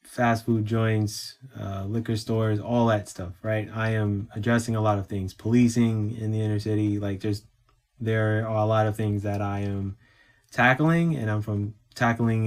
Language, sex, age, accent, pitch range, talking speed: English, male, 20-39, American, 100-115 Hz, 185 wpm